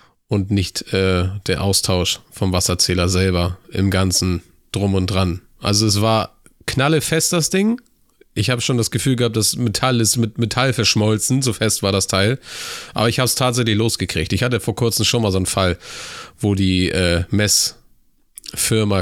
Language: German